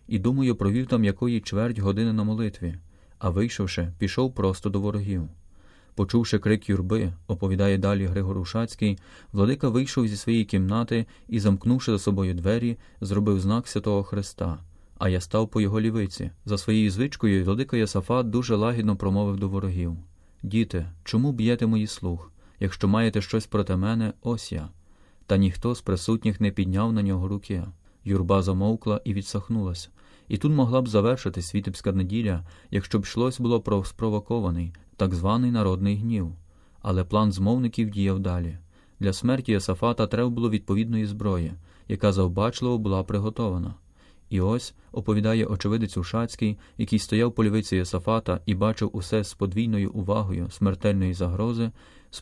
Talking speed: 150 wpm